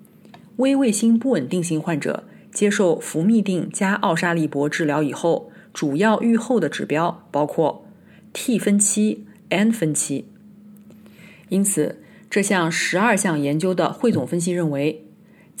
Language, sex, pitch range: Chinese, female, 155-210 Hz